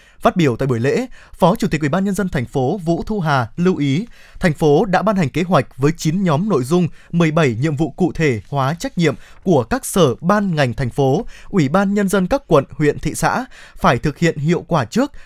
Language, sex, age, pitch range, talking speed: Vietnamese, male, 20-39, 145-195 Hz, 240 wpm